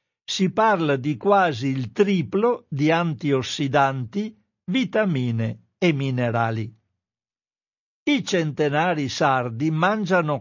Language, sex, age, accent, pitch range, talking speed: Italian, male, 60-79, native, 135-175 Hz, 85 wpm